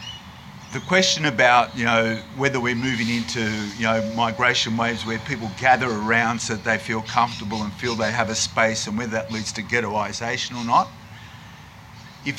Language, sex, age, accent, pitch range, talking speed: English, male, 50-69, Australian, 110-125 Hz, 180 wpm